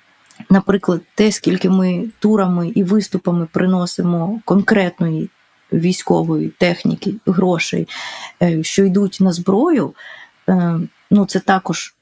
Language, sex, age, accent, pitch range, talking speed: Ukrainian, female, 20-39, native, 175-210 Hz, 95 wpm